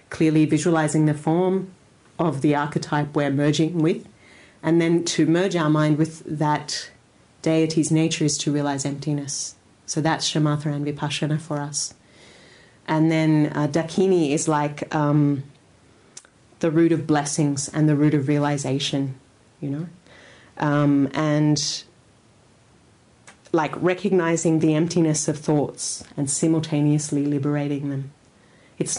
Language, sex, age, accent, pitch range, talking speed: English, female, 30-49, Australian, 140-160 Hz, 130 wpm